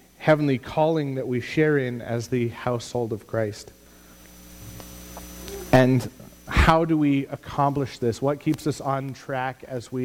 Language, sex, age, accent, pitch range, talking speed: English, male, 30-49, American, 90-135 Hz, 145 wpm